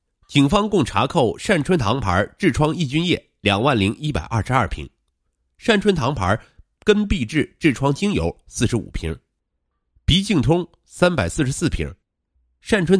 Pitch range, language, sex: 85-145 Hz, Chinese, male